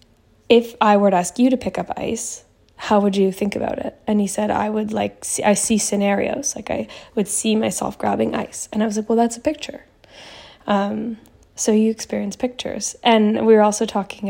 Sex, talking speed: female, 210 wpm